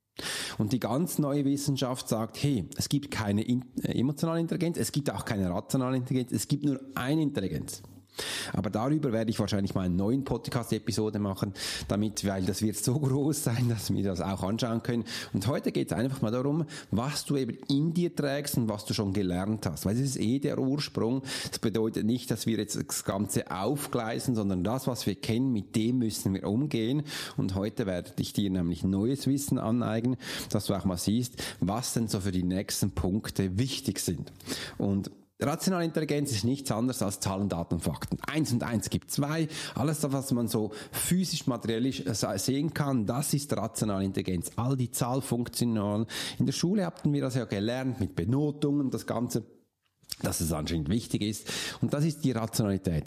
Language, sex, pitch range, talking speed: German, male, 105-140 Hz, 190 wpm